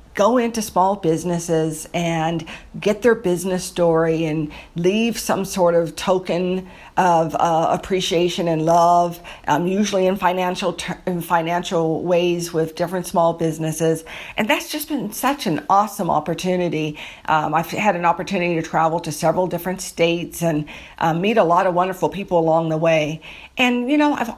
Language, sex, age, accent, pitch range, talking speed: English, female, 50-69, American, 165-195 Hz, 160 wpm